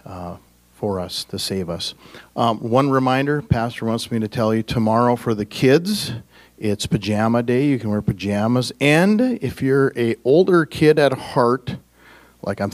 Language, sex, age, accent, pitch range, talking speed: English, male, 40-59, American, 105-125 Hz, 170 wpm